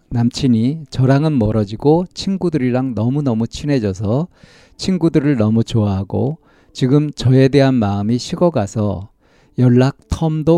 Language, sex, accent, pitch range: Korean, male, native, 105-145 Hz